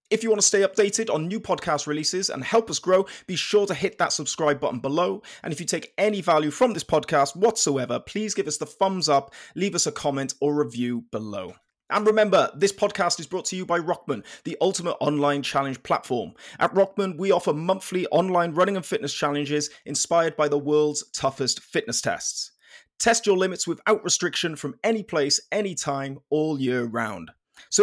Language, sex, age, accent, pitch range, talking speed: English, male, 30-49, British, 145-190 Hz, 195 wpm